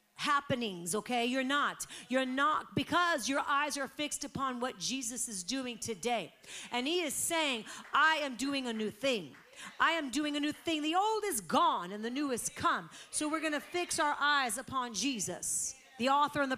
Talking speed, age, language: 195 wpm, 40-59, English